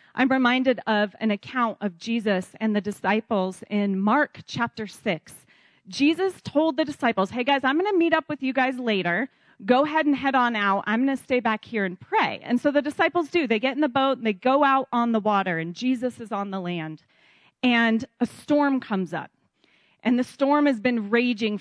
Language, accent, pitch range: English, American, 205-270 Hz